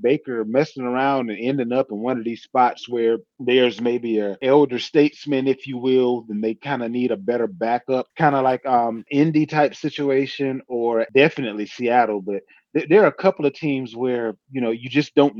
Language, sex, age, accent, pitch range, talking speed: English, male, 30-49, American, 115-145 Hz, 205 wpm